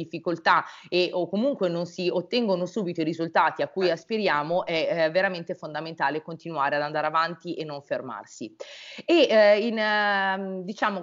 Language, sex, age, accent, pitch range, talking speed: Italian, female, 30-49, native, 165-200 Hz, 150 wpm